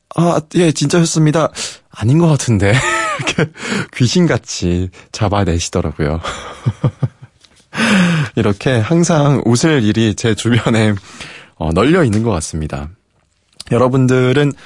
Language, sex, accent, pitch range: Korean, male, native, 90-145 Hz